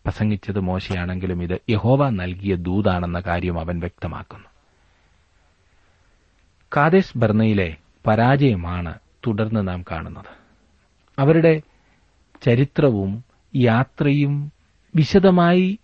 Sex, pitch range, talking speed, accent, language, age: male, 90-115 Hz, 70 wpm, native, Malayalam, 40-59